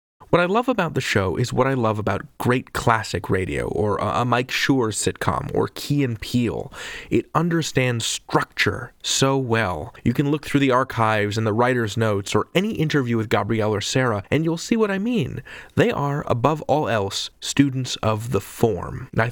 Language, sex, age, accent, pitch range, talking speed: English, male, 30-49, American, 110-150 Hz, 185 wpm